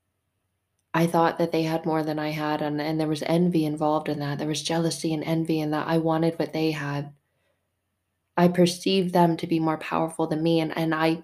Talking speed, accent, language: 220 wpm, American, English